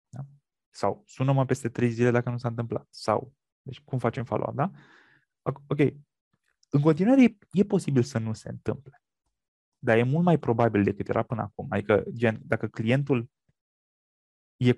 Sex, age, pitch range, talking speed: male, 20-39, 115-145 Hz, 160 wpm